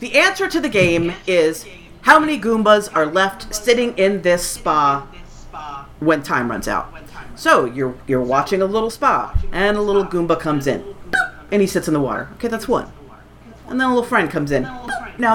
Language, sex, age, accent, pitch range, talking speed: English, female, 40-59, American, 190-290 Hz, 190 wpm